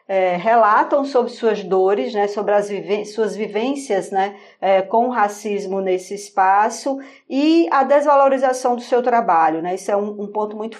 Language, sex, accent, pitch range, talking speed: Portuguese, female, Brazilian, 200-235 Hz, 170 wpm